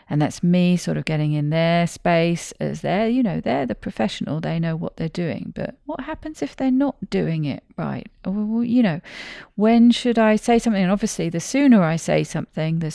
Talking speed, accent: 210 wpm, British